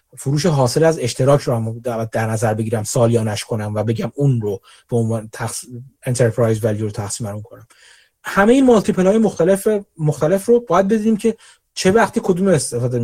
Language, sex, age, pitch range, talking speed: Persian, male, 30-49, 135-185 Hz, 160 wpm